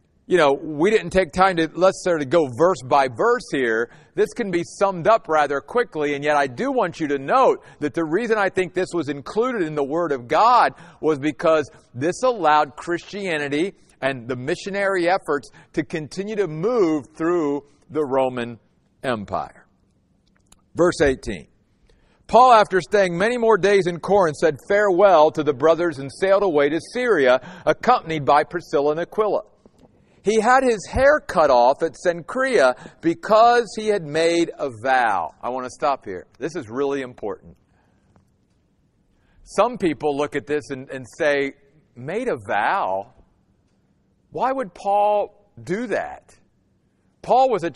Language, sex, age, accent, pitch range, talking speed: English, male, 50-69, American, 145-195 Hz, 155 wpm